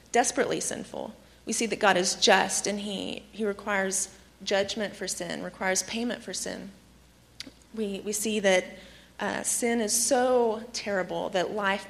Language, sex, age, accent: English, female, 30-49, American